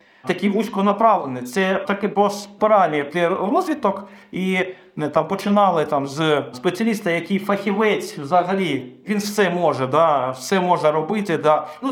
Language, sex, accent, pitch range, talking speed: Ukrainian, male, native, 165-210 Hz, 125 wpm